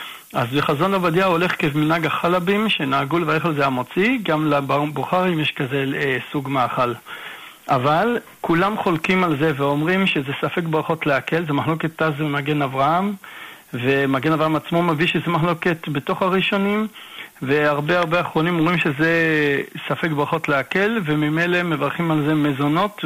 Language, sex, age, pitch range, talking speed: Hebrew, male, 60-79, 145-185 Hz, 140 wpm